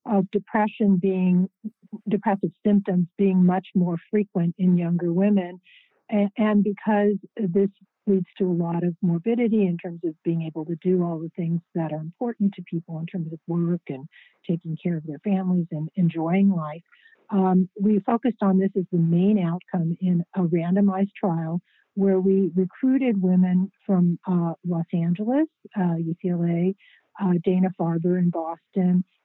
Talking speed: 160 wpm